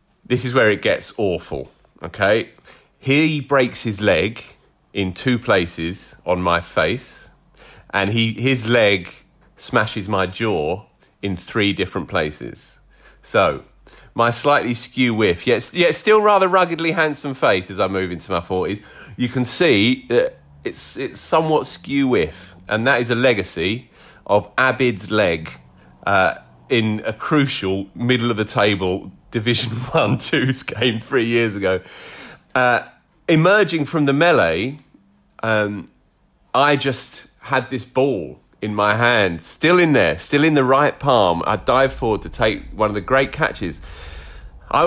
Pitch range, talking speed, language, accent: 105-145 Hz, 145 wpm, English, British